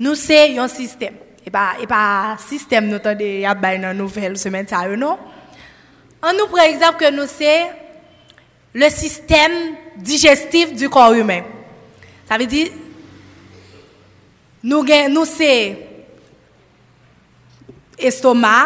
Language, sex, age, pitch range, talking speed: French, female, 20-39, 245-325 Hz, 120 wpm